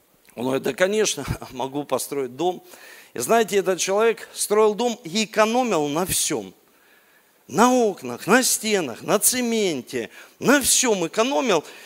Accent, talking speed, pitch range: native, 130 wpm, 175-240 Hz